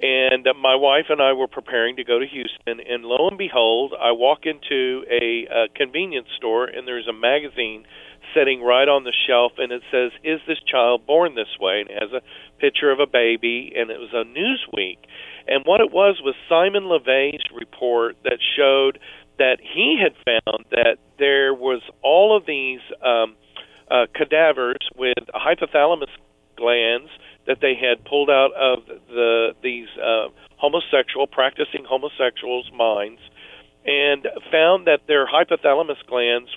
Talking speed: 160 wpm